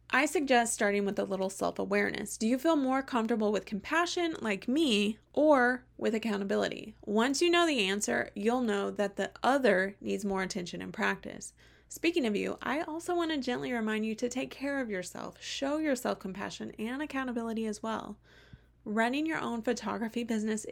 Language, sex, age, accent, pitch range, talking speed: English, female, 20-39, American, 200-260 Hz, 175 wpm